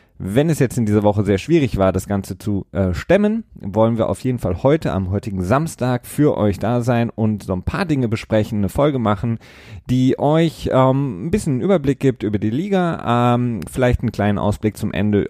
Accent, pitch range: German, 100-125 Hz